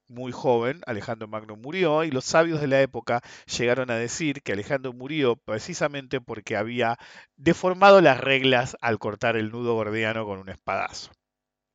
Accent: Argentinian